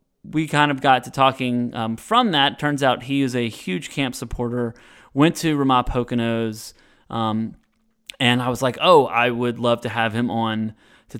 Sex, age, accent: male, 20-39, American